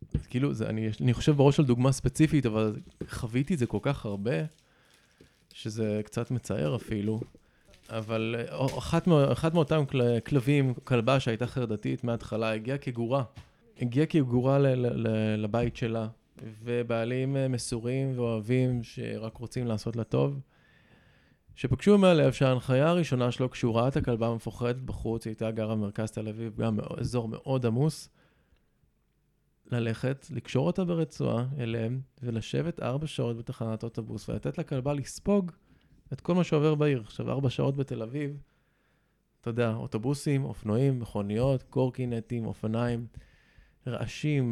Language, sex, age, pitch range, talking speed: Hebrew, male, 20-39, 115-140 Hz, 130 wpm